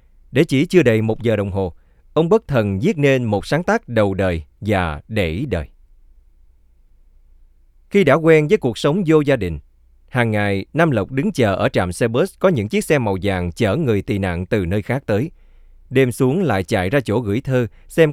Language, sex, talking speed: Vietnamese, male, 210 wpm